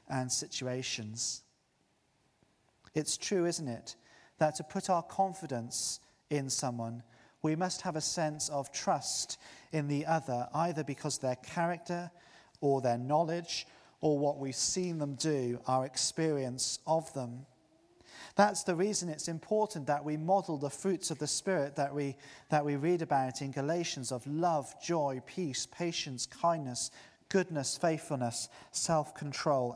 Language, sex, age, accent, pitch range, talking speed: English, male, 40-59, British, 130-165 Hz, 140 wpm